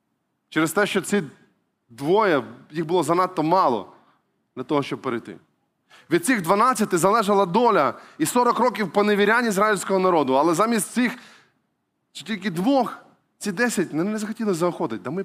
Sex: male